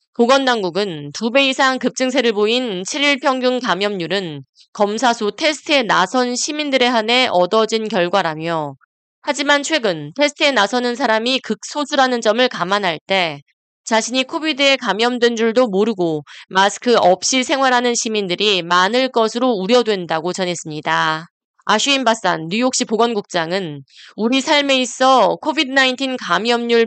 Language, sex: Korean, female